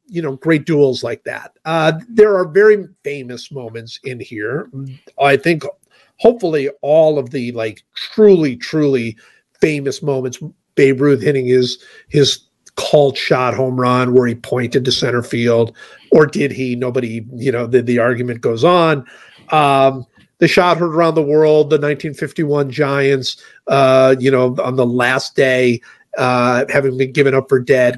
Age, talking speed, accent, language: 50-69, 160 wpm, American, English